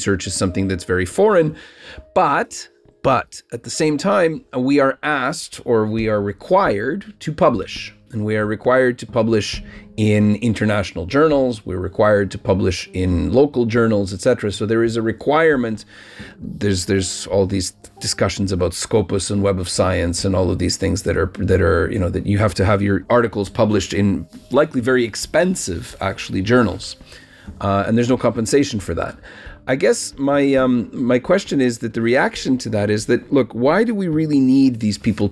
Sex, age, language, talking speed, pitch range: male, 30-49, Ukrainian, 185 wpm, 100-145 Hz